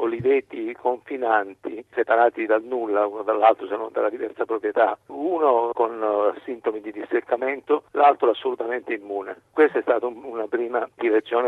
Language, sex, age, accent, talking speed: Italian, male, 50-69, native, 135 wpm